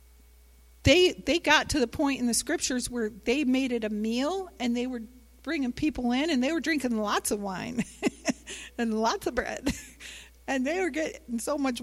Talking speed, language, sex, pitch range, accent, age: 195 wpm, English, female, 215-315 Hz, American, 50-69